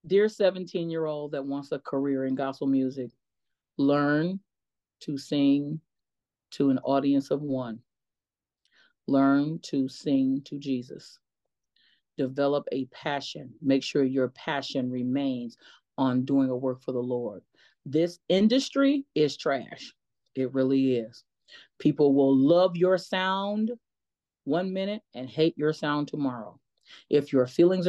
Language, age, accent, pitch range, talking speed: English, 40-59, American, 135-170 Hz, 130 wpm